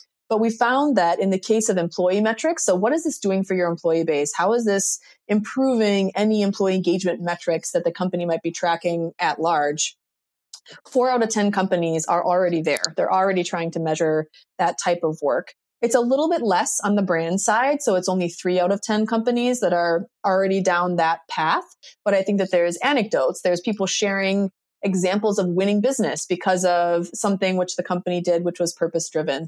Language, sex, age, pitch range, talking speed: English, female, 20-39, 170-215 Hz, 200 wpm